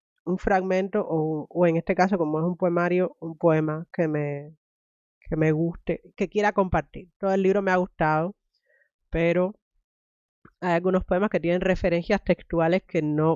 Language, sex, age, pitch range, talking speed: Spanish, female, 30-49, 150-175 Hz, 165 wpm